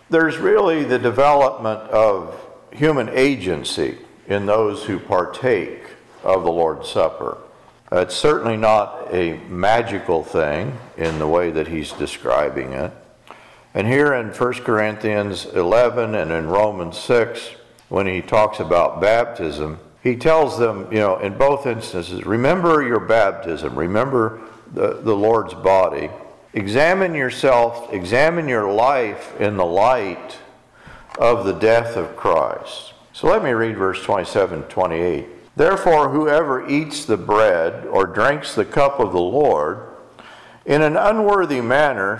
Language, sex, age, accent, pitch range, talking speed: English, male, 50-69, American, 105-140 Hz, 135 wpm